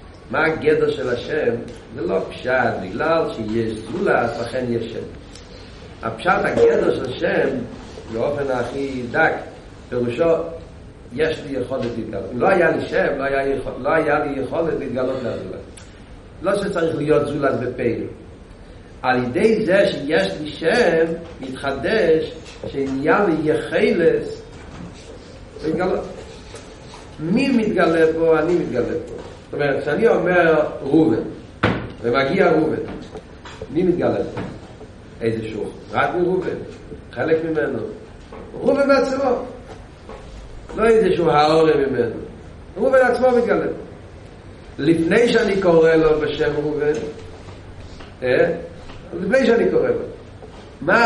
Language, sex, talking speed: Hebrew, male, 110 wpm